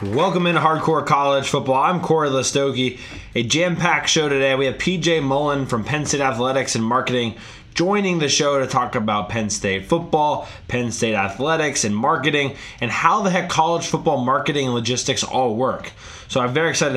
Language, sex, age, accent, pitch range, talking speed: English, male, 20-39, American, 130-175 Hz, 185 wpm